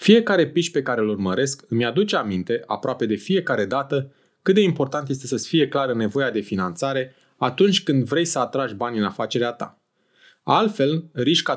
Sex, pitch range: male, 125-165 Hz